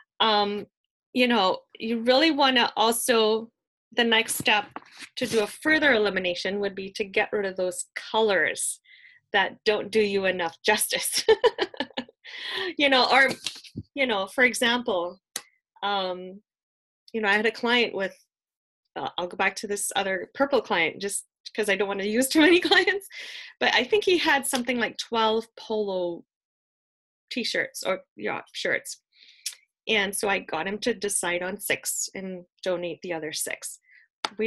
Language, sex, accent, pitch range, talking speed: English, female, American, 195-265 Hz, 160 wpm